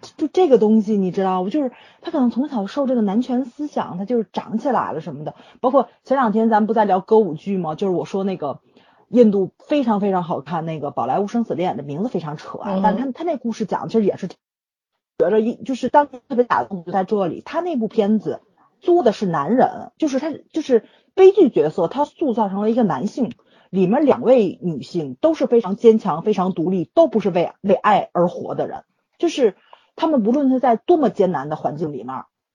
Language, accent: Chinese, native